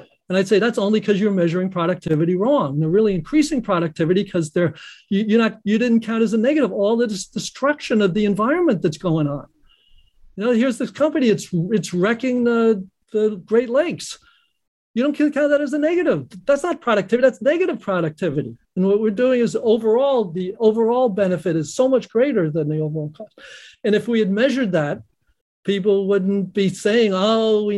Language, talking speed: English, 185 wpm